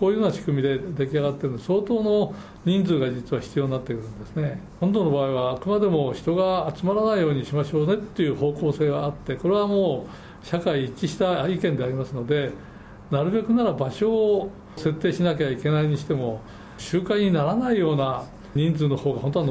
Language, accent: Japanese, native